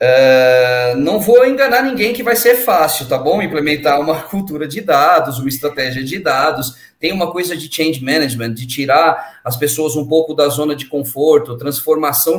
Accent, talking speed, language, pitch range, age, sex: Brazilian, 175 wpm, Portuguese, 145-210 Hz, 20-39, male